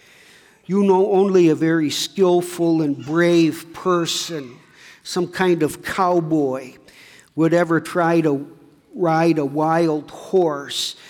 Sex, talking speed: male, 115 wpm